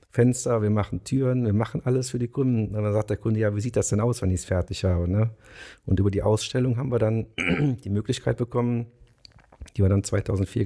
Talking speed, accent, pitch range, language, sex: 225 wpm, German, 100-115 Hz, German, male